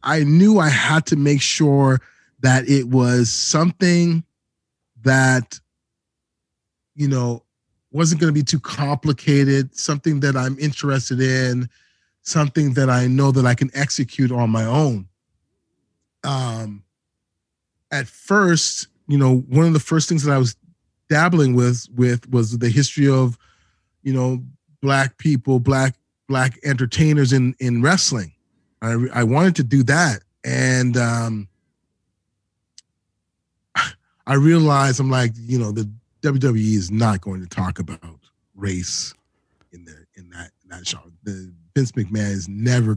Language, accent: English, American